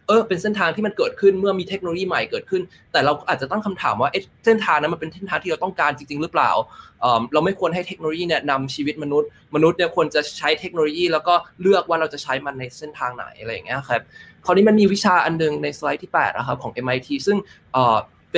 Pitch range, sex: 140-180 Hz, male